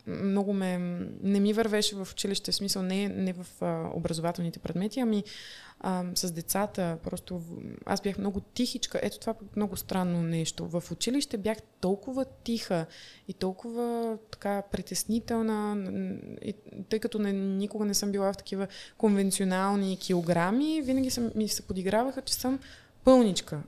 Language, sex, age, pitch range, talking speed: Bulgarian, female, 20-39, 185-235 Hz, 145 wpm